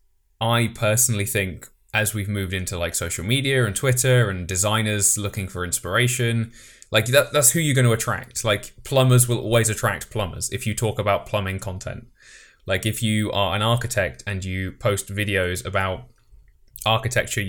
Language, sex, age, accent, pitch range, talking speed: English, male, 20-39, British, 95-120 Hz, 160 wpm